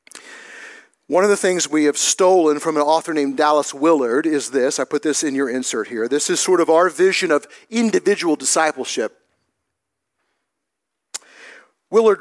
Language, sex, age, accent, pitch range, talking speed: English, male, 50-69, American, 150-220 Hz, 155 wpm